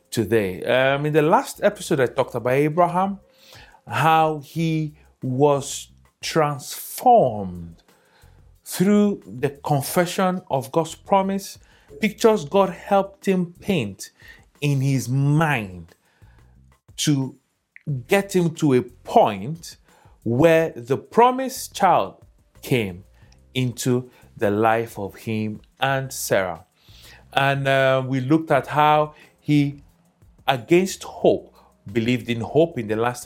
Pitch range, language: 115-165 Hz, English